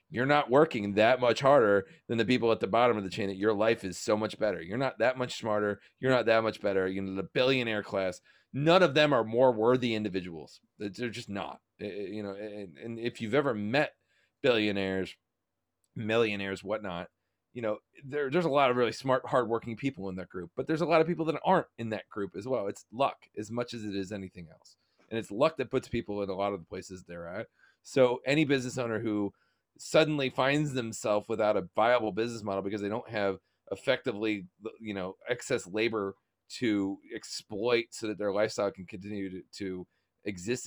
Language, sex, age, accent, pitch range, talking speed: English, male, 30-49, American, 100-125 Hz, 205 wpm